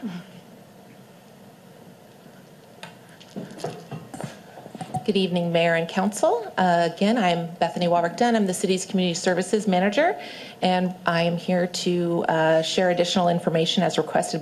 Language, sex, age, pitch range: English, female, 30-49, 165-200 Hz